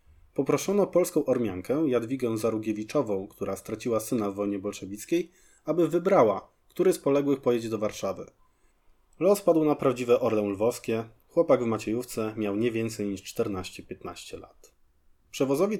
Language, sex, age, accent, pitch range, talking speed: Polish, male, 20-39, native, 105-150 Hz, 135 wpm